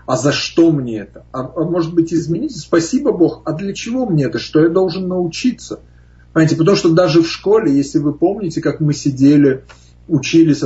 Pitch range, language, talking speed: 130-160 Hz, Russian, 190 wpm